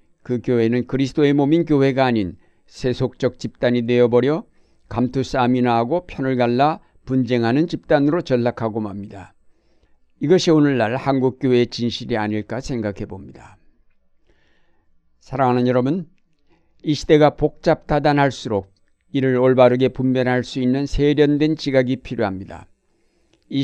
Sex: male